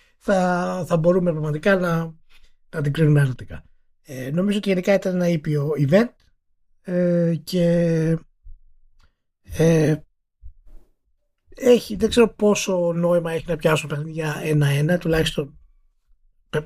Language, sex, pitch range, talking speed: Greek, male, 145-185 Hz, 115 wpm